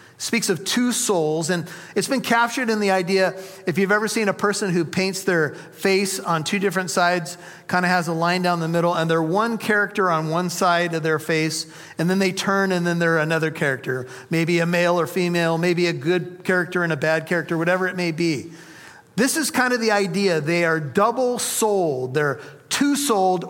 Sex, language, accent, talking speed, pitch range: male, English, American, 205 wpm, 170-205 Hz